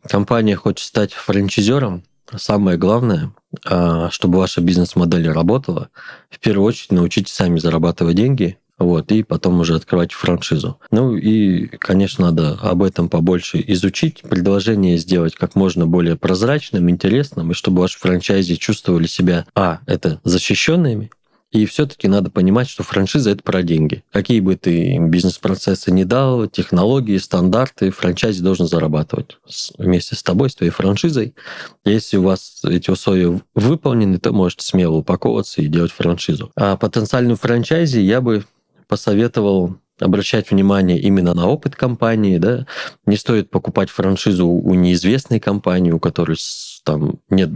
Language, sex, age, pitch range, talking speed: Russian, male, 20-39, 90-110 Hz, 140 wpm